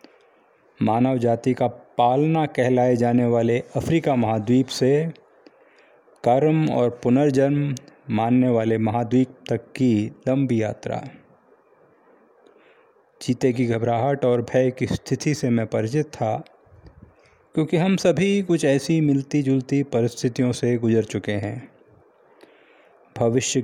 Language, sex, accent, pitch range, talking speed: English, male, Indian, 120-150 Hz, 110 wpm